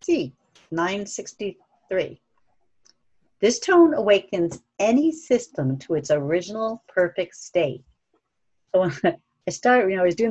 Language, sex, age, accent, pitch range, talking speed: English, female, 50-69, American, 145-205 Hz, 120 wpm